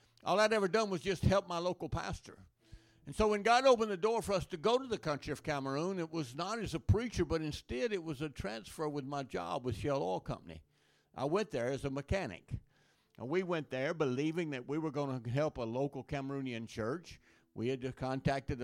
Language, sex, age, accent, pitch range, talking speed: English, male, 60-79, American, 125-165 Hz, 220 wpm